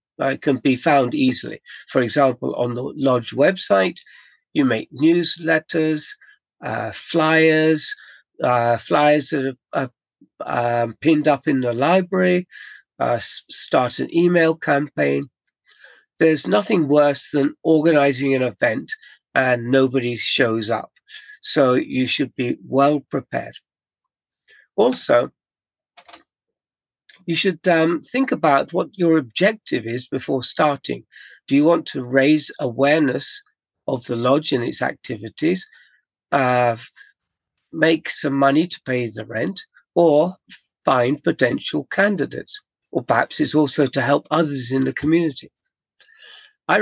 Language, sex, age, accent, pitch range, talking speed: English, male, 60-79, British, 130-170 Hz, 125 wpm